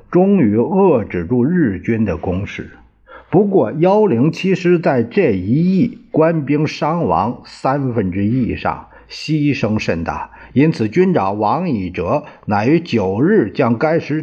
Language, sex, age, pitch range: Chinese, male, 50-69, 115-180 Hz